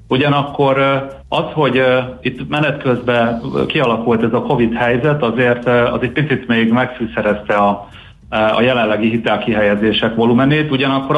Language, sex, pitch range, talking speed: Hungarian, male, 110-140 Hz, 125 wpm